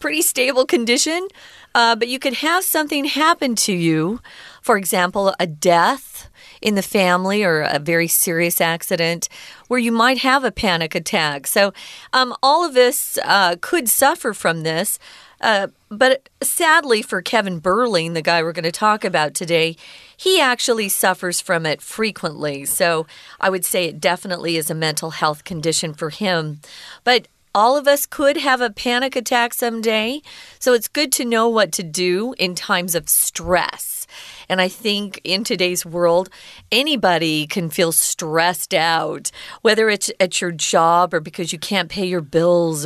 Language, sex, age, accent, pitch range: Chinese, female, 40-59, American, 170-240 Hz